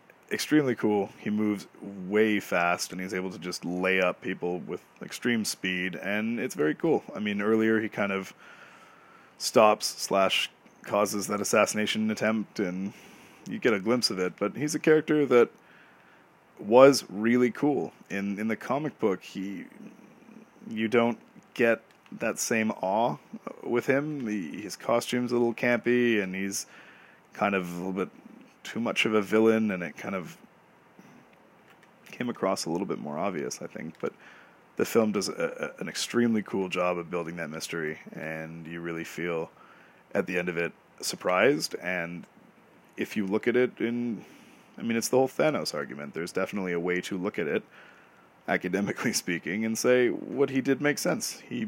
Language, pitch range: English, 95-120 Hz